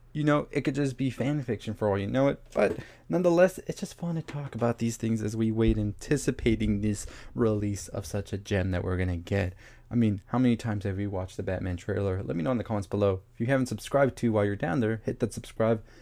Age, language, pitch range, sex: 20-39, English, 105-125 Hz, male